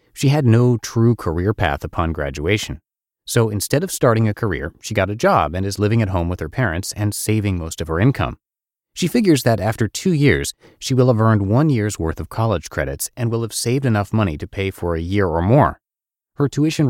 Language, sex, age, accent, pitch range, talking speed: English, male, 30-49, American, 90-120 Hz, 225 wpm